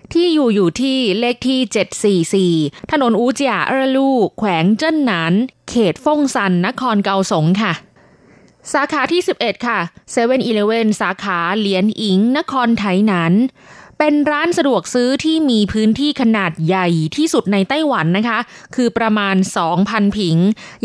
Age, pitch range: 20-39, 190-250 Hz